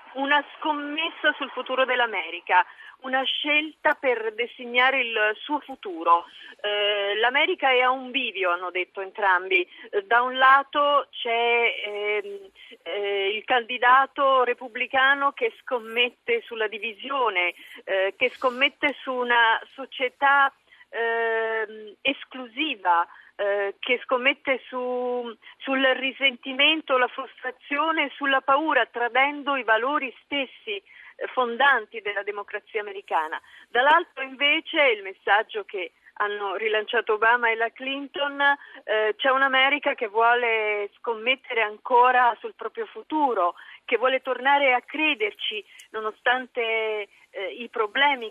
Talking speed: 110 wpm